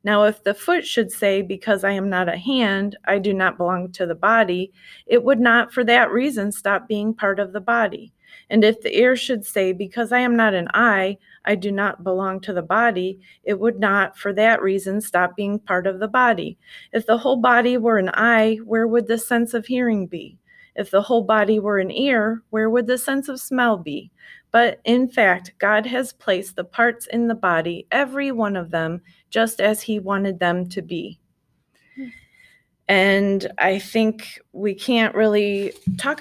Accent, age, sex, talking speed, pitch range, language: American, 30-49, female, 195 wpm, 195-235 Hz, English